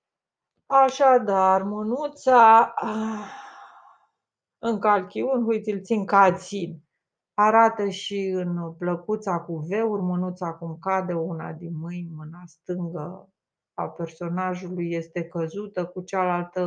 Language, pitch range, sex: Romanian, 160-185 Hz, female